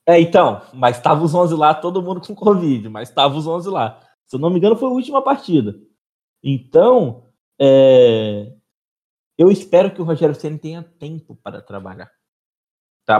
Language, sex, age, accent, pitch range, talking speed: Portuguese, male, 20-39, Brazilian, 105-150 Hz, 175 wpm